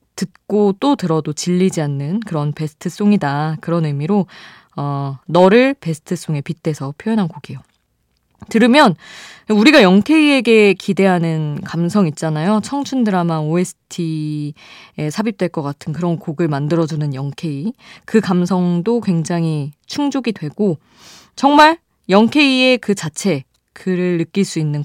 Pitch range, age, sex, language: 155-220 Hz, 20-39, female, Korean